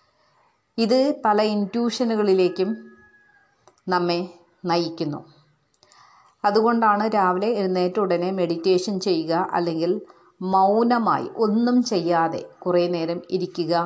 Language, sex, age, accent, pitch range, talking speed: Malayalam, female, 30-49, native, 170-215 Hz, 80 wpm